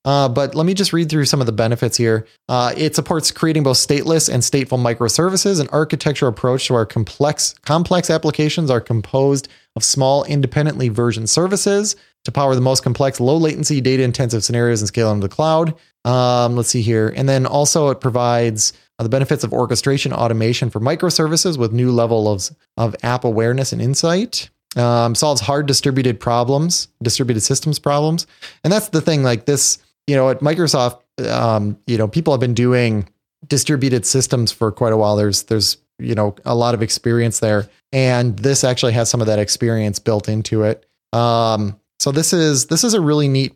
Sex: male